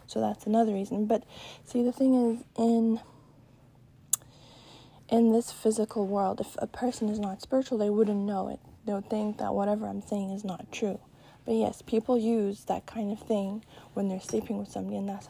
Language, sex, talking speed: English, female, 190 wpm